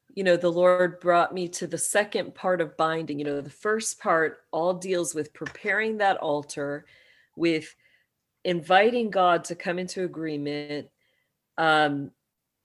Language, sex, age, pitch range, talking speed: English, female, 40-59, 160-200 Hz, 145 wpm